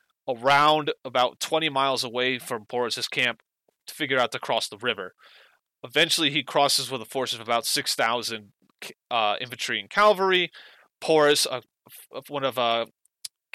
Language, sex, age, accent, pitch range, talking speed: English, male, 30-49, American, 115-140 Hz, 150 wpm